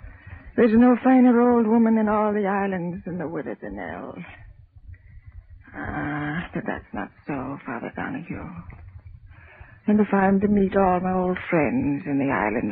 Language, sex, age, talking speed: English, female, 60-79, 155 wpm